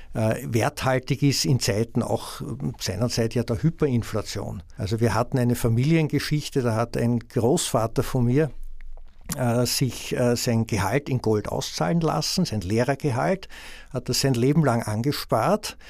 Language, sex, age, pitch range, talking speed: German, male, 60-79, 115-140 Hz, 140 wpm